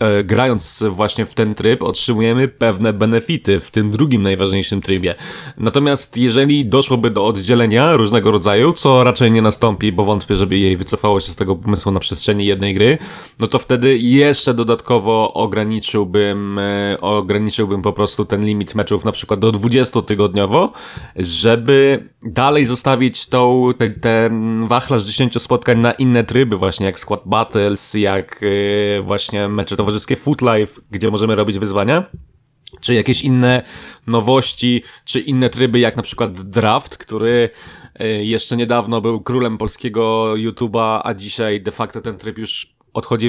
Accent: native